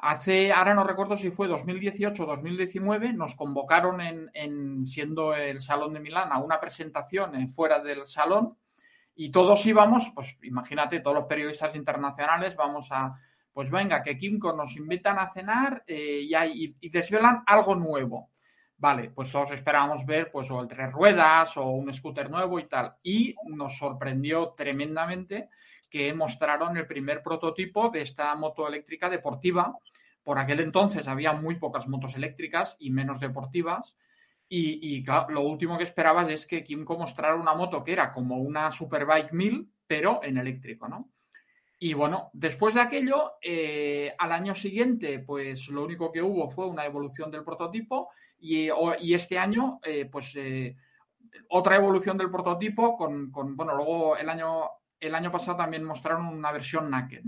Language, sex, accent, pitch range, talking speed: Spanish, male, Spanish, 145-185 Hz, 170 wpm